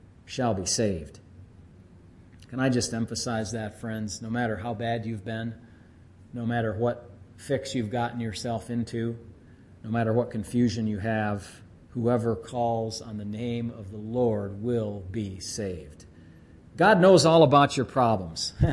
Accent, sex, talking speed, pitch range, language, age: American, male, 145 wpm, 100-130 Hz, English, 40-59